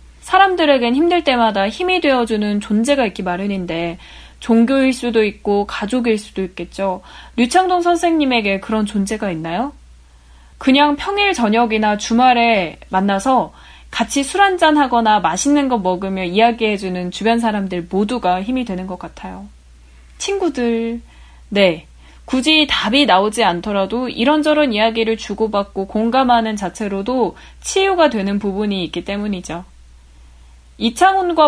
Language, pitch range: Korean, 195-275 Hz